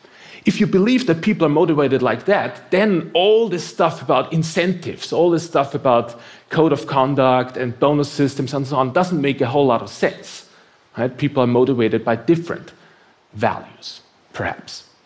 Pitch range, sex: 125-170 Hz, male